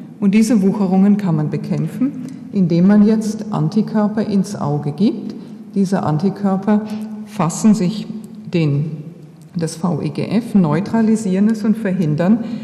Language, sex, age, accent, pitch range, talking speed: German, female, 50-69, German, 170-215 Hz, 115 wpm